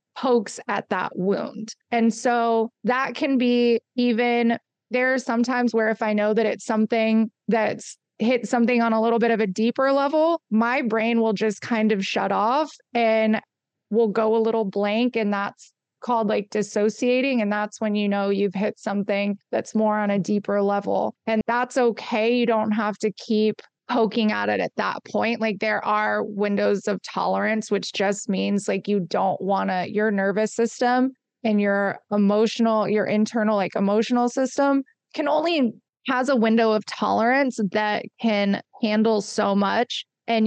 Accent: American